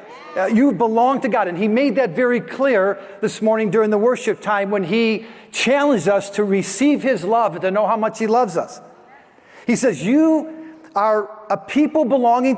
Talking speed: 190 wpm